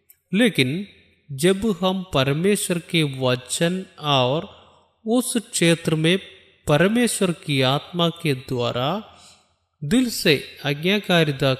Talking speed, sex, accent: 95 wpm, male, native